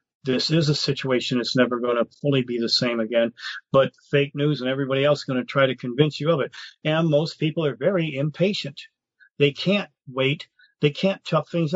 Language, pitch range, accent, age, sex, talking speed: English, 140-170 Hz, American, 40-59, male, 205 wpm